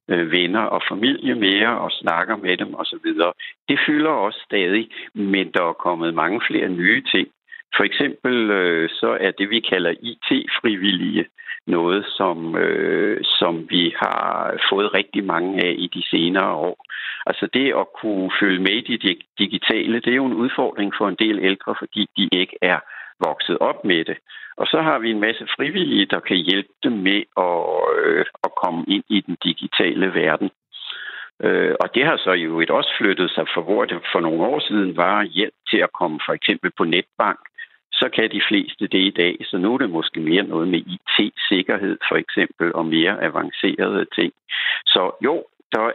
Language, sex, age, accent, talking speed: Danish, male, 60-79, native, 180 wpm